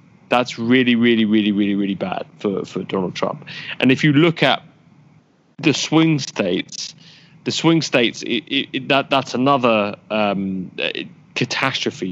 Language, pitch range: English, 105-140 Hz